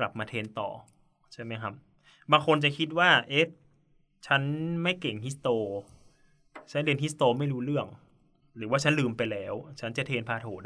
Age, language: 20-39, Thai